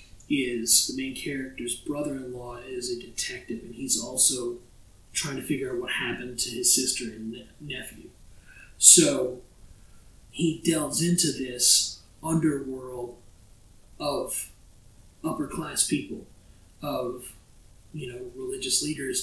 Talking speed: 110 wpm